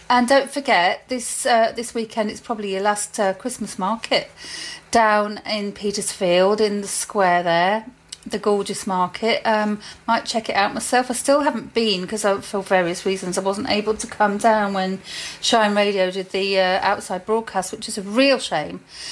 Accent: British